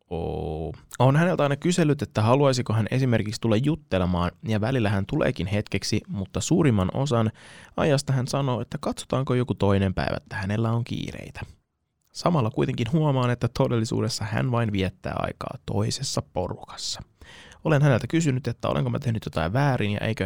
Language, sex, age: Finnish, male, 20-39